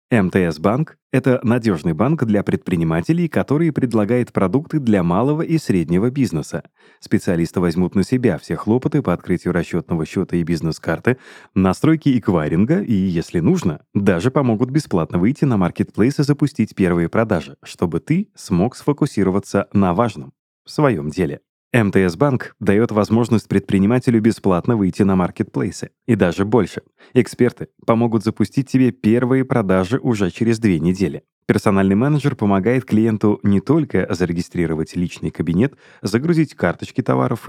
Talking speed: 135 wpm